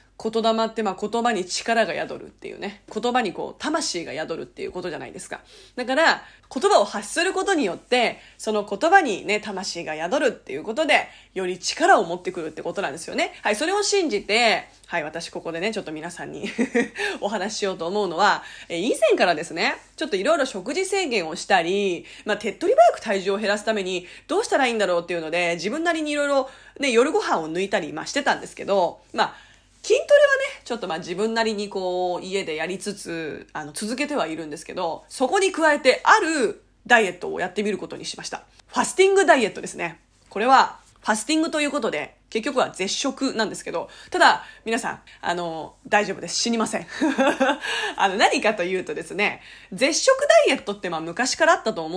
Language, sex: Japanese, female